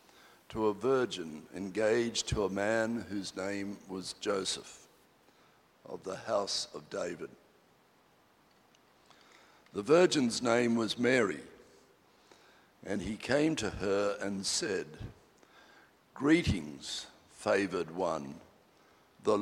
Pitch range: 100-130 Hz